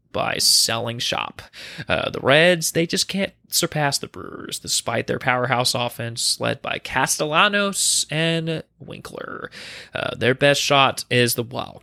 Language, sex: English, male